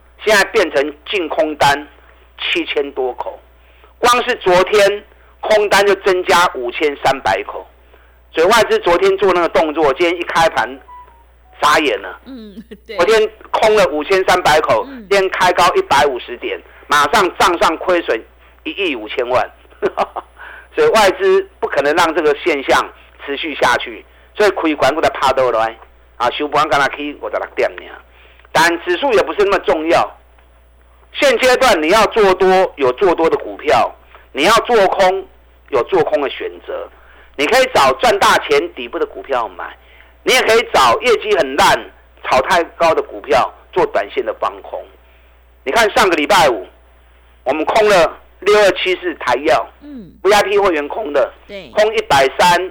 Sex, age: male, 50-69